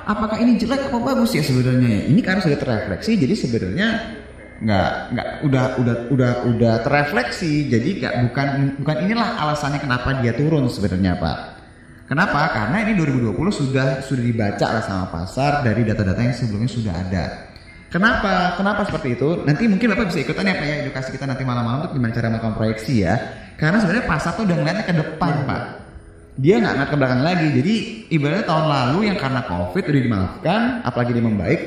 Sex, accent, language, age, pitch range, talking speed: male, native, Indonesian, 20-39, 115-155 Hz, 180 wpm